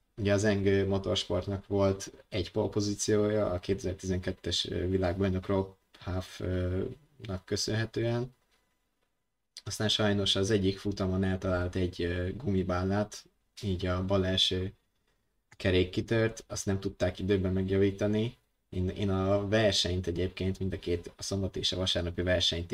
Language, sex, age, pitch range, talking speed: Hungarian, male, 20-39, 90-105 Hz, 120 wpm